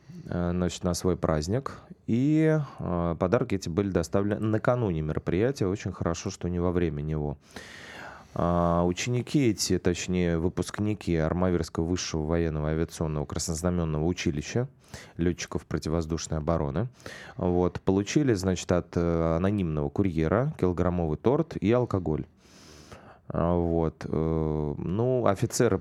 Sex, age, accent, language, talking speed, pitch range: male, 30-49, native, Russian, 105 wpm, 80-110 Hz